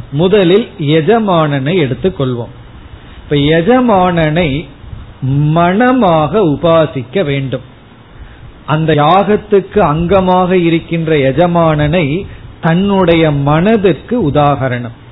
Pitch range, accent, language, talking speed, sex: 135-185 Hz, native, Tamil, 70 wpm, male